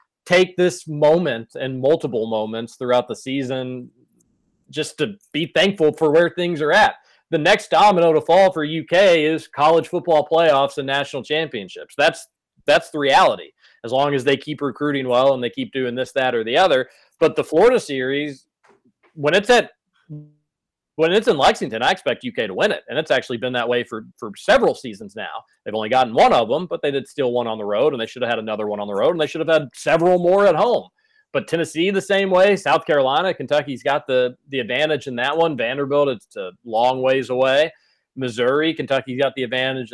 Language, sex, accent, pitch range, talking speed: English, male, American, 125-165 Hz, 210 wpm